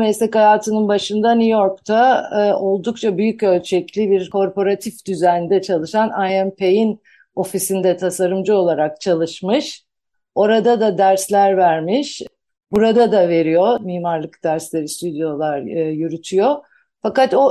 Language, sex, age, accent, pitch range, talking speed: Turkish, female, 50-69, native, 180-225 Hz, 110 wpm